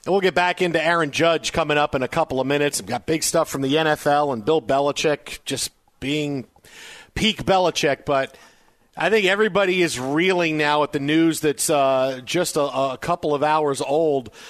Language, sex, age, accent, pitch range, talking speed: English, male, 50-69, American, 135-165 Hz, 195 wpm